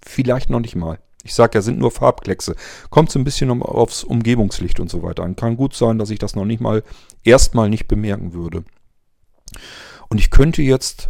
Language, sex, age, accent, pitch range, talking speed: German, male, 40-59, German, 95-125 Hz, 200 wpm